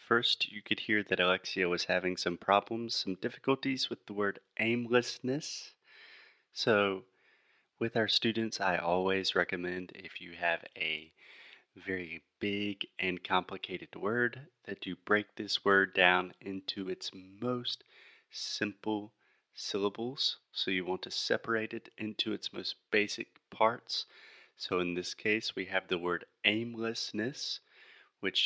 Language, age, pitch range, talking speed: Portuguese, 30-49, 95-120 Hz, 135 wpm